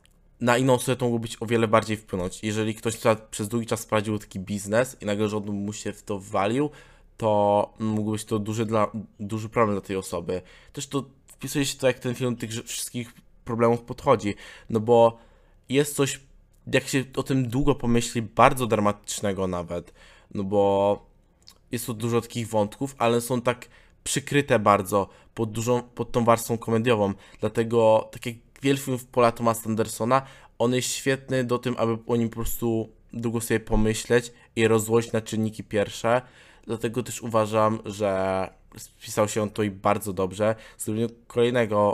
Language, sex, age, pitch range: Polish, male, 20-39, 105-120 Hz